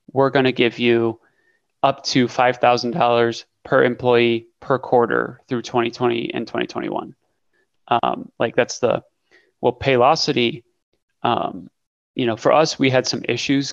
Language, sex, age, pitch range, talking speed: English, male, 30-49, 120-130 Hz, 135 wpm